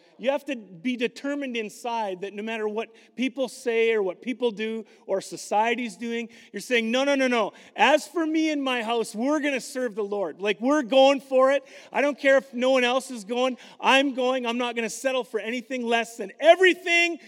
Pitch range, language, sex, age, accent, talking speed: 205-260 Hz, English, male, 40-59, American, 220 wpm